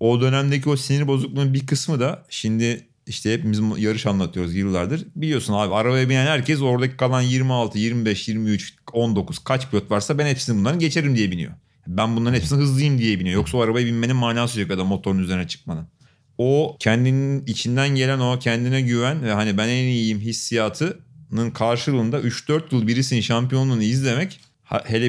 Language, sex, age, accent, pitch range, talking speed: Turkish, male, 40-59, native, 105-135 Hz, 165 wpm